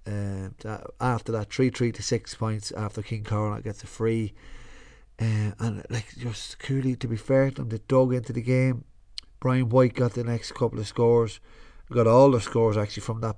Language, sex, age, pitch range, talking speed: English, male, 30-49, 110-130 Hz, 200 wpm